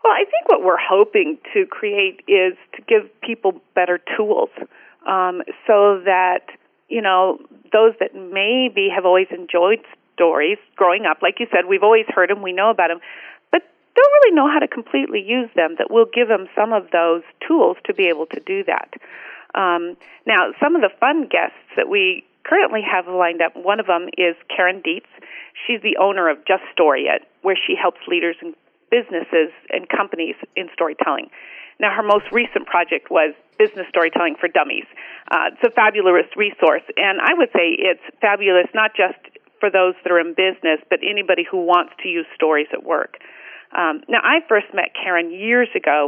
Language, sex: English, female